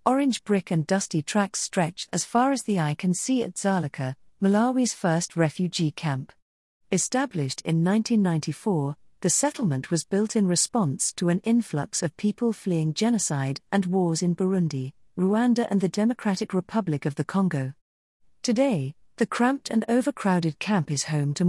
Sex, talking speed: female, 155 wpm